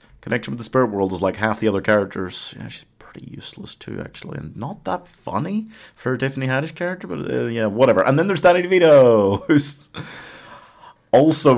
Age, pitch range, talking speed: 30-49, 95-150 Hz, 190 wpm